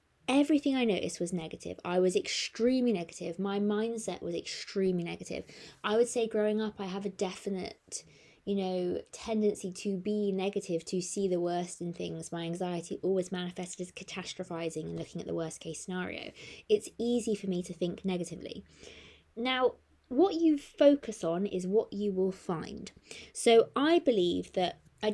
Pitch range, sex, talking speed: 180-235 Hz, female, 165 wpm